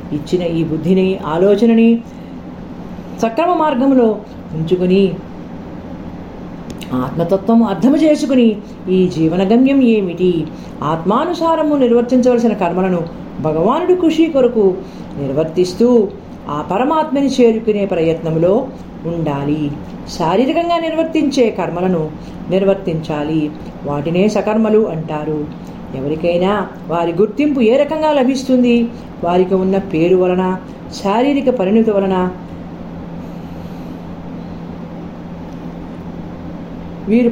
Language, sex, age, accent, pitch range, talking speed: Telugu, female, 40-59, native, 170-235 Hz, 75 wpm